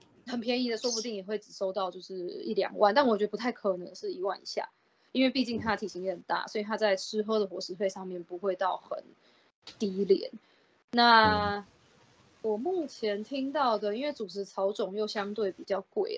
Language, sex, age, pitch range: Chinese, female, 20-39, 195-245 Hz